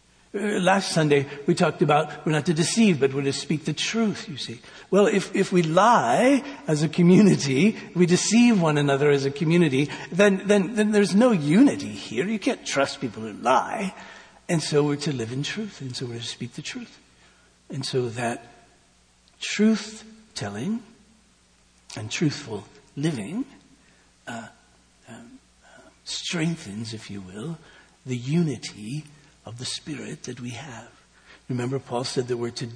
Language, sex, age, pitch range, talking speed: English, male, 60-79, 120-185 Hz, 160 wpm